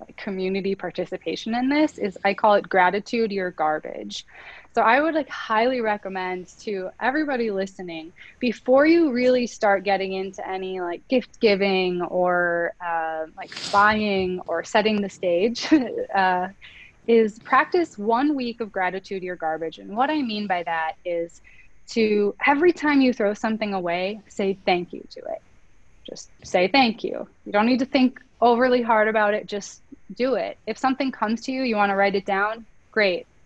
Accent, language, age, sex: American, English, 20-39, female